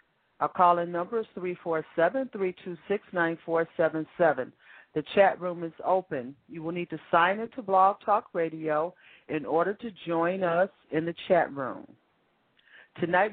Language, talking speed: English, 145 wpm